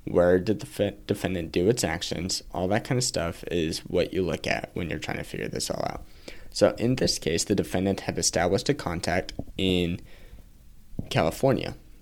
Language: English